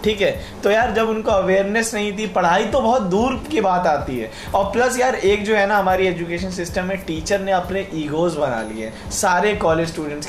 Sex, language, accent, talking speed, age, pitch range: male, Hindi, native, 215 wpm, 20-39, 180-210 Hz